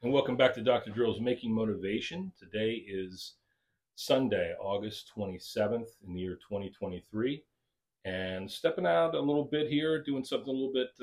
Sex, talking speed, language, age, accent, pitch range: male, 160 wpm, English, 40-59, American, 95-120 Hz